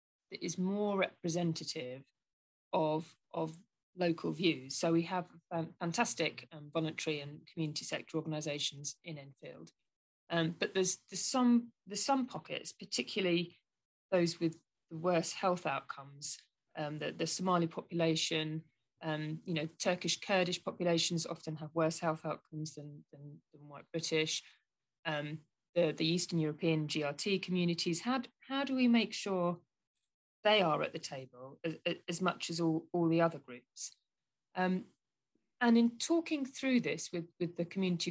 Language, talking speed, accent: English, 145 wpm, British